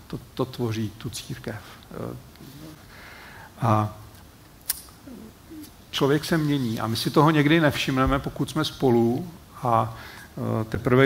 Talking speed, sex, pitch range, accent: 110 wpm, male, 110-135 Hz, native